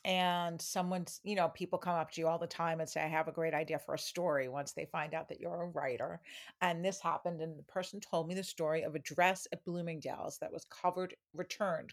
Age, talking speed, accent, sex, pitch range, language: 50-69, 245 wpm, American, female, 160-185 Hz, English